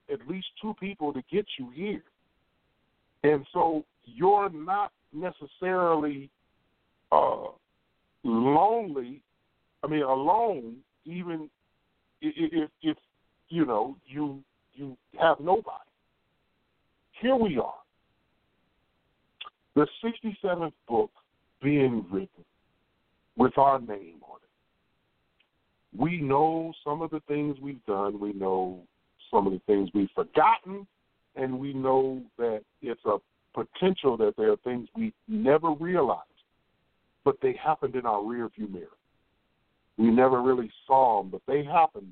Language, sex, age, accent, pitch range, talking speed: English, male, 50-69, American, 125-175 Hz, 125 wpm